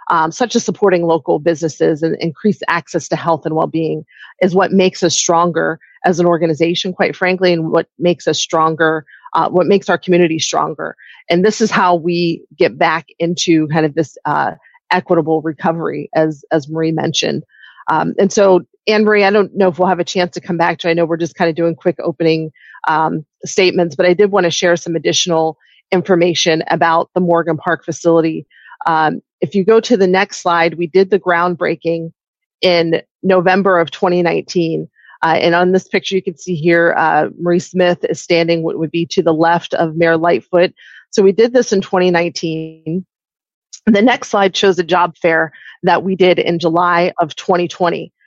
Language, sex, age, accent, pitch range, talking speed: English, female, 30-49, American, 165-185 Hz, 190 wpm